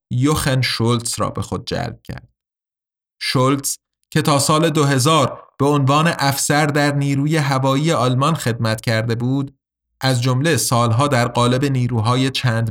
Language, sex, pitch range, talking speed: Persian, male, 125-165 Hz, 135 wpm